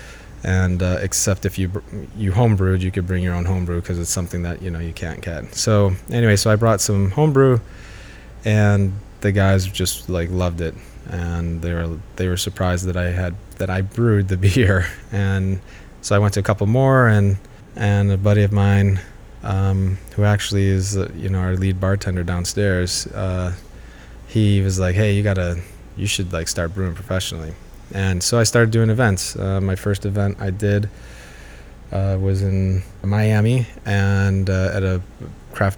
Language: English